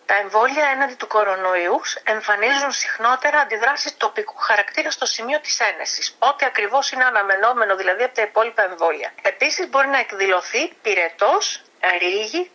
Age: 50-69